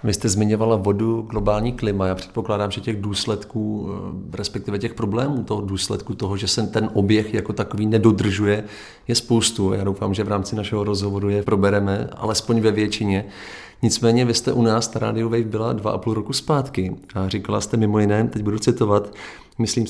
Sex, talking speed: male, 185 wpm